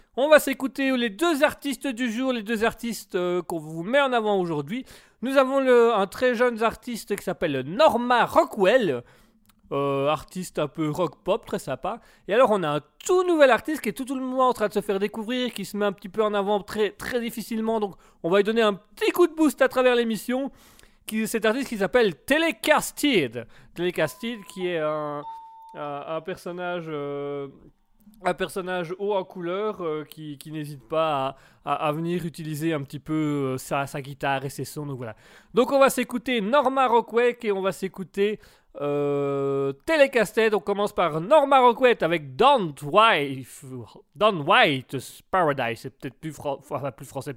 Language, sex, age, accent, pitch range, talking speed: French, male, 30-49, French, 150-240 Hz, 190 wpm